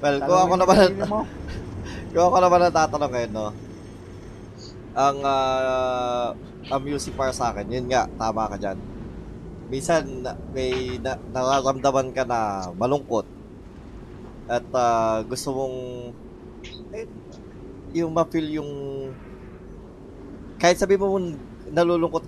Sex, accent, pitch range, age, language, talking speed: male, native, 110-140 Hz, 20-39, Filipino, 95 wpm